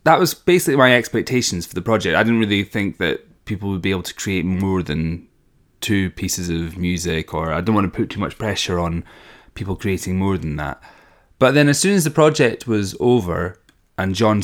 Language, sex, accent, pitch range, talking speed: English, male, British, 90-115 Hz, 210 wpm